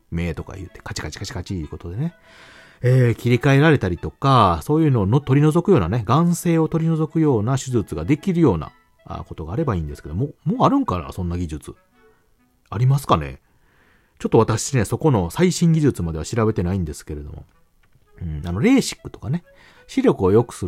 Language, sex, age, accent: Japanese, male, 40-59, native